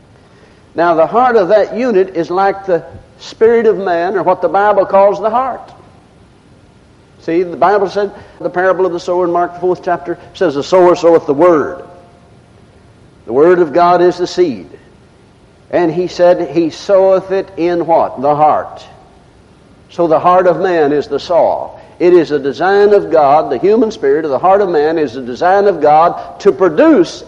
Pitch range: 175-260 Hz